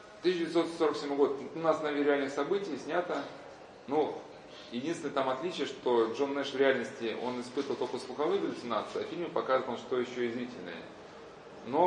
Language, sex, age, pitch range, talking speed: Russian, male, 20-39, 125-175 Hz, 150 wpm